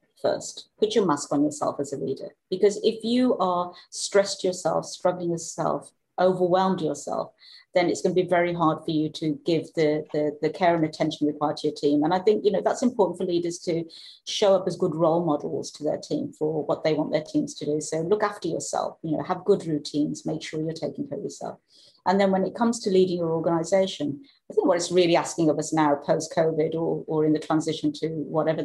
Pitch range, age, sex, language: 155-185 Hz, 40-59, female, English